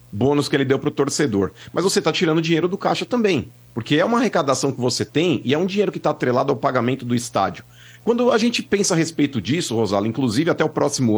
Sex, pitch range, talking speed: male, 120-160 Hz, 235 wpm